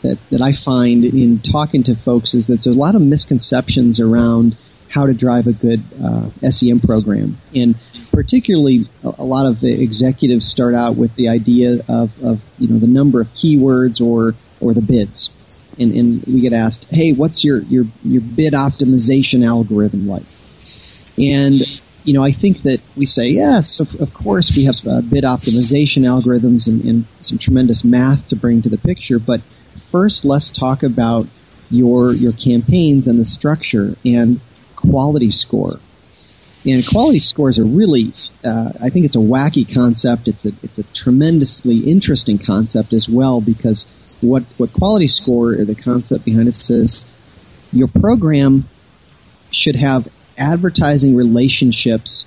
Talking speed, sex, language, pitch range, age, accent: 160 wpm, male, English, 115-135 Hz, 40-59, American